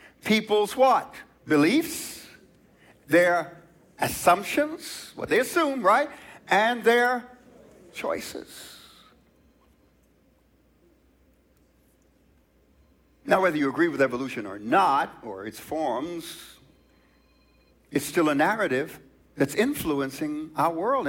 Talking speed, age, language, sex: 90 wpm, 60-79, English, male